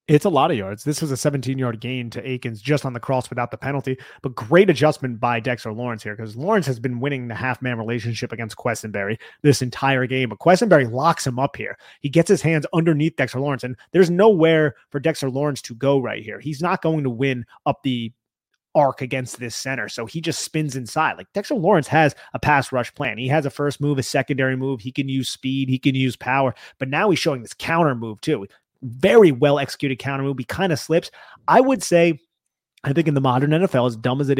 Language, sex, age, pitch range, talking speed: English, male, 30-49, 125-150 Hz, 230 wpm